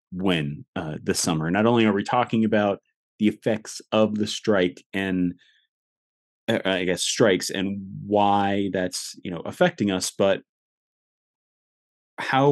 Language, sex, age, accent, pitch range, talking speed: English, male, 30-49, American, 90-110 Hz, 140 wpm